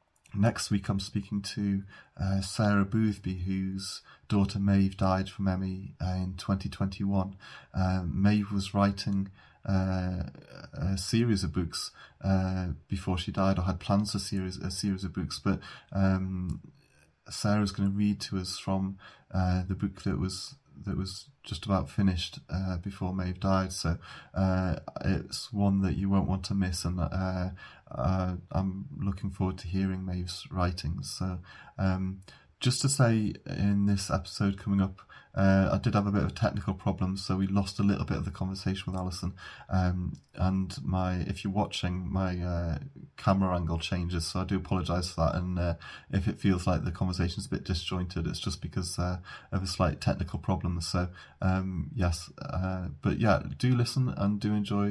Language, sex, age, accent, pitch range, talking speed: English, male, 30-49, British, 90-100 Hz, 175 wpm